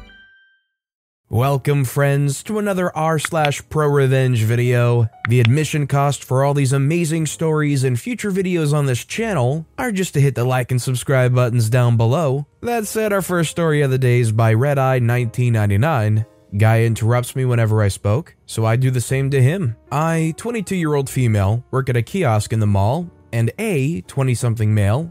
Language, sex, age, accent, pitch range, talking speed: English, male, 20-39, American, 110-150 Hz, 175 wpm